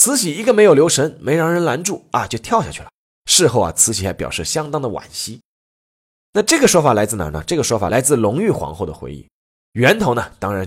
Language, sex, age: Chinese, male, 20-39